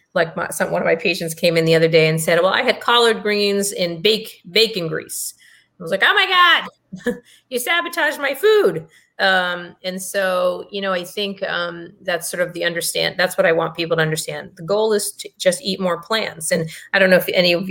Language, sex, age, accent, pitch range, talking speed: English, female, 30-49, American, 170-210 Hz, 230 wpm